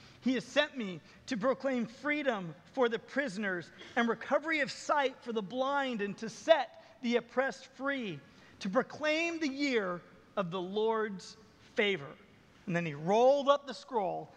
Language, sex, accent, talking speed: English, male, American, 160 wpm